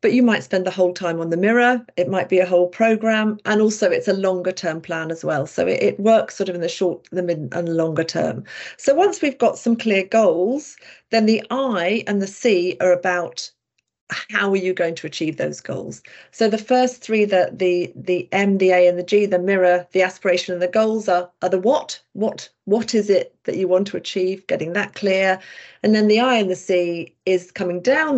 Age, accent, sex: 40-59, British, female